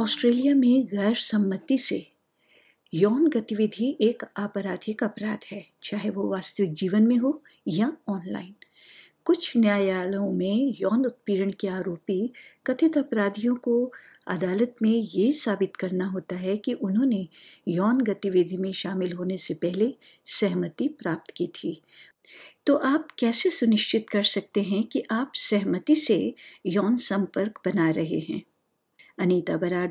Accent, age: native, 50-69